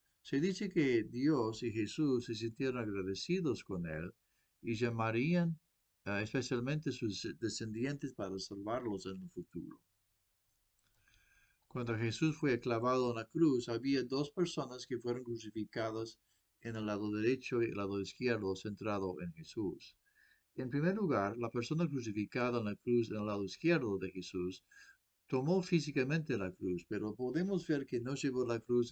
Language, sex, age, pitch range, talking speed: English, male, 50-69, 105-135 Hz, 150 wpm